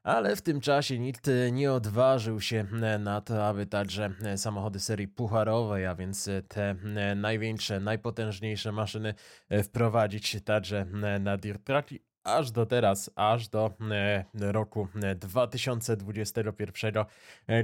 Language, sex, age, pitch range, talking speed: Polish, male, 20-39, 100-130 Hz, 110 wpm